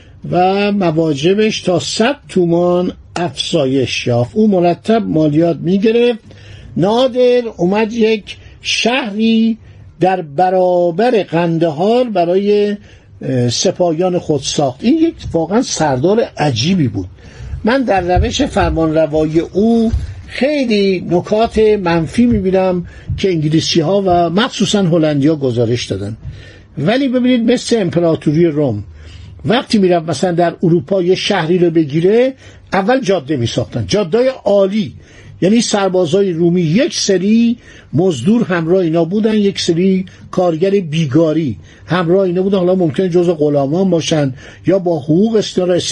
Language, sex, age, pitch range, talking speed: Persian, male, 60-79, 155-215 Hz, 120 wpm